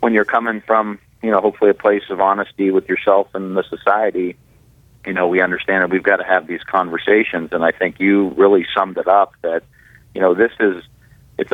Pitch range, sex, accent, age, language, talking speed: 85-105 Hz, male, American, 40-59, English, 215 wpm